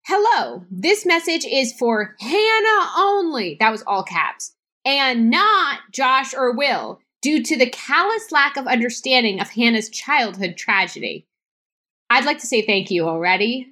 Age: 20-39